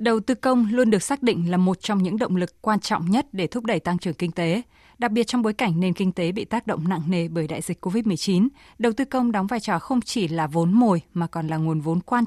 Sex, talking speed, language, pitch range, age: female, 280 wpm, Vietnamese, 175-235 Hz, 20-39